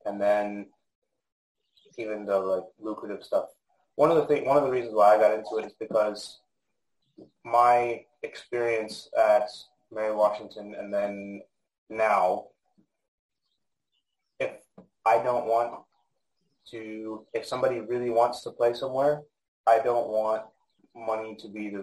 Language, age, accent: English, 20-39, American